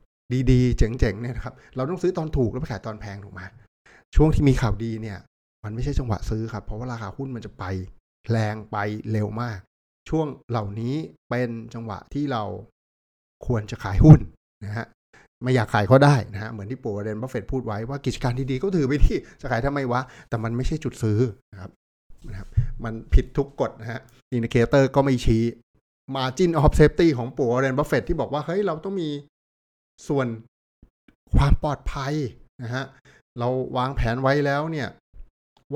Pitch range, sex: 105-135 Hz, male